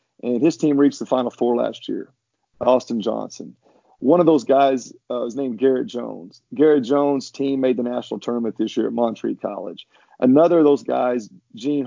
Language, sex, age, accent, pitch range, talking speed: English, male, 40-59, American, 125-160 Hz, 185 wpm